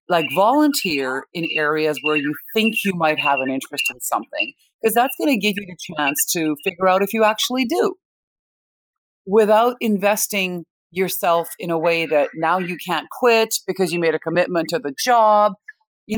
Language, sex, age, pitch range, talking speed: English, female, 40-59, 155-235 Hz, 180 wpm